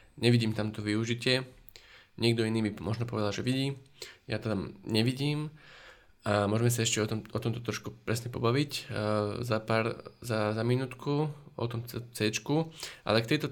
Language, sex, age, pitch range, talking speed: Slovak, male, 20-39, 110-125 Hz, 175 wpm